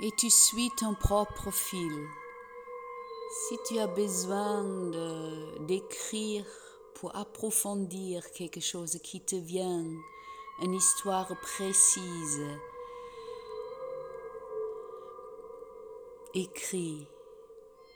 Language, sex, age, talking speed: French, female, 50-69, 75 wpm